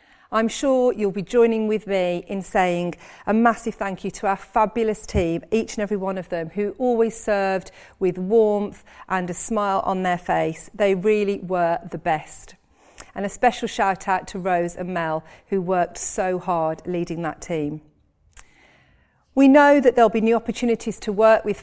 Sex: female